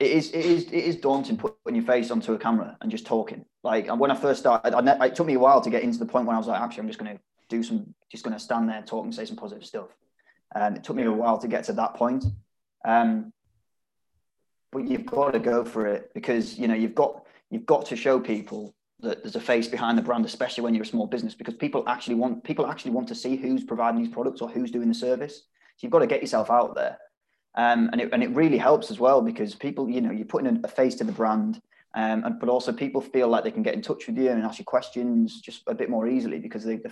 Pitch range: 115-170 Hz